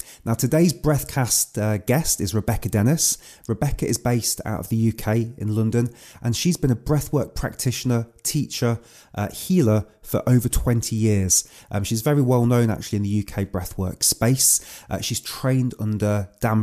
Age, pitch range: 30-49, 105-125 Hz